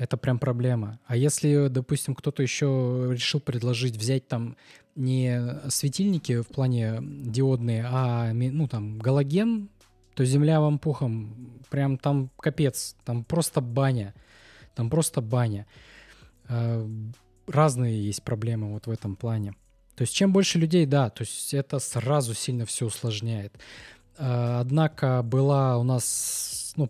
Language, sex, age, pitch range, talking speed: Russian, male, 20-39, 115-145 Hz, 130 wpm